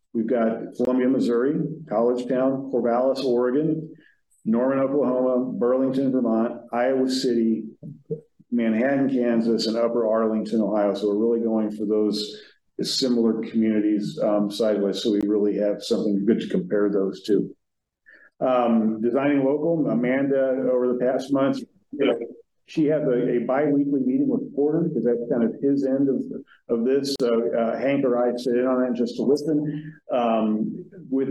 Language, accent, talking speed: English, American, 155 wpm